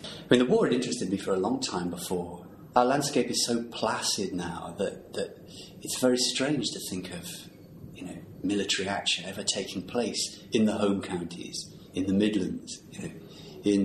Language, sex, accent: English, male, British